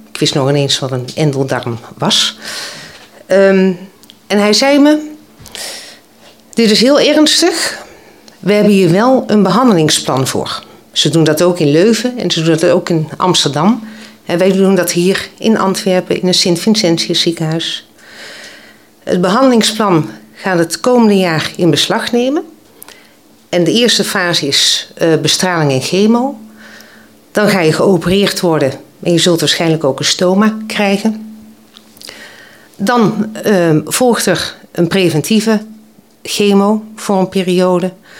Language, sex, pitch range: Dutch, female, 170-220 Hz